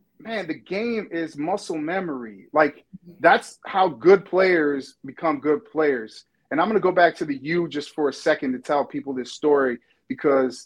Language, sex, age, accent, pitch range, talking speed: English, male, 40-59, American, 145-190 Hz, 185 wpm